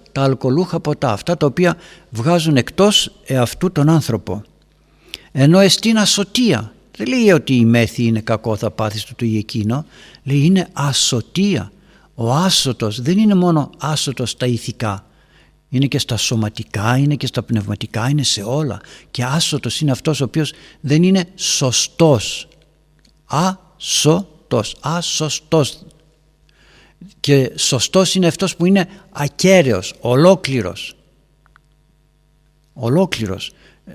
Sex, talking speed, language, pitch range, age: male, 120 wpm, Greek, 115-170 Hz, 60-79